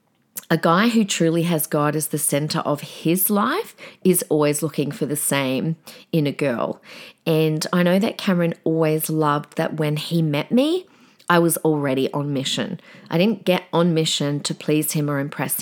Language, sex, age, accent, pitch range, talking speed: English, female, 30-49, Australian, 150-190 Hz, 185 wpm